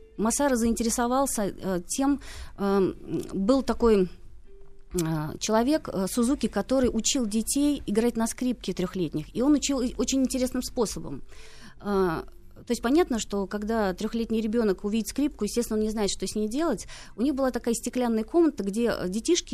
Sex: female